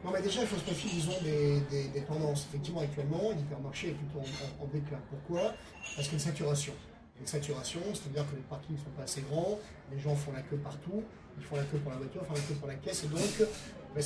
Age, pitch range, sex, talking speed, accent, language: 30-49, 145-175 Hz, male, 270 wpm, French, French